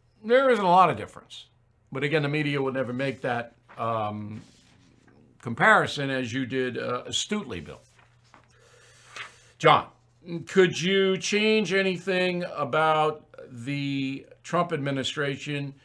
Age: 60-79